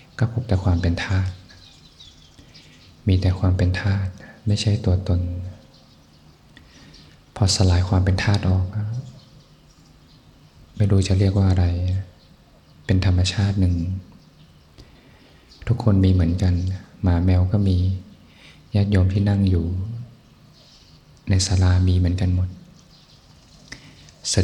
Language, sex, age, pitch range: Thai, male, 20-39, 90-100 Hz